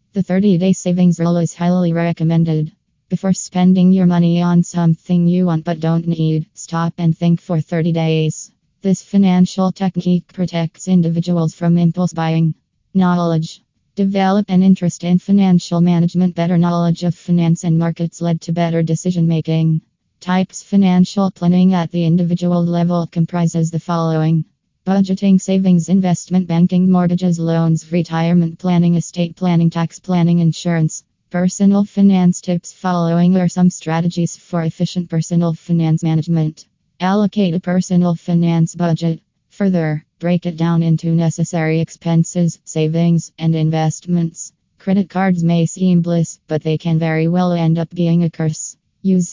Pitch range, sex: 165-180 Hz, female